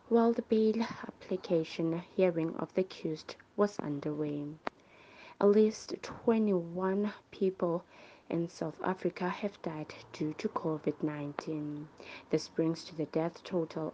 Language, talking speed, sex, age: English, 120 wpm, female, 20-39